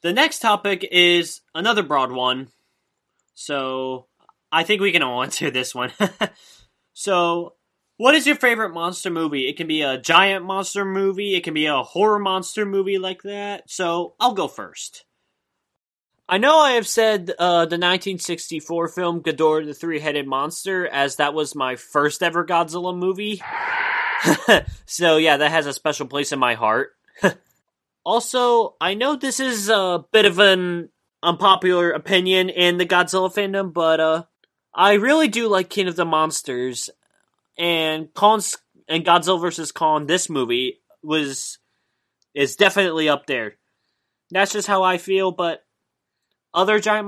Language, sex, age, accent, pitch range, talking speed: English, male, 20-39, American, 155-200 Hz, 155 wpm